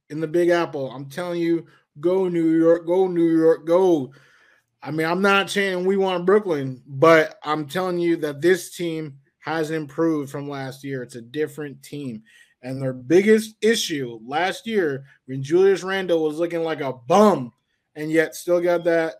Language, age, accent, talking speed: English, 20-39, American, 180 wpm